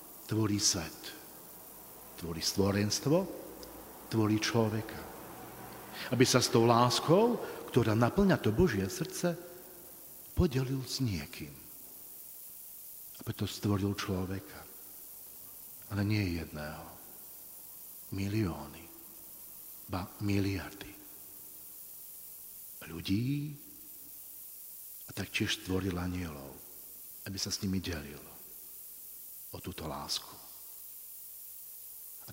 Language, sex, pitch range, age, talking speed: Slovak, male, 95-145 Hz, 50-69, 80 wpm